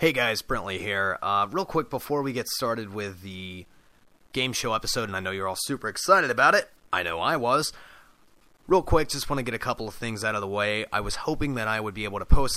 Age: 30-49